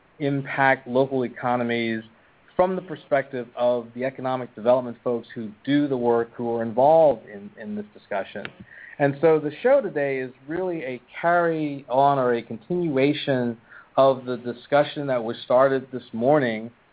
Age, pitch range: 40-59, 115-145 Hz